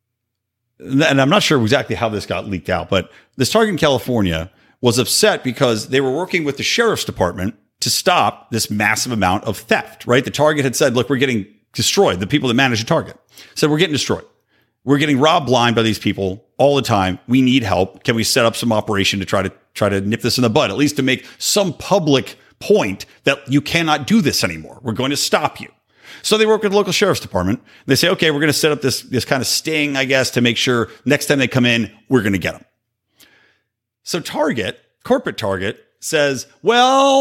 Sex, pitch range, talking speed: male, 115-190 Hz, 225 wpm